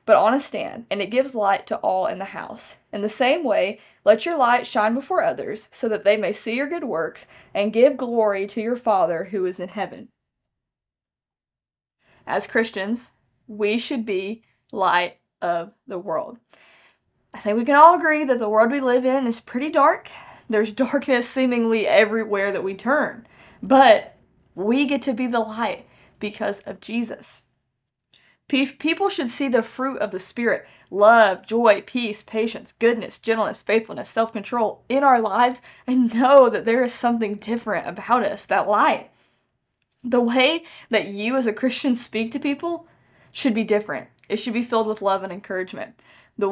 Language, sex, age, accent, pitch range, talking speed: English, female, 20-39, American, 210-265 Hz, 175 wpm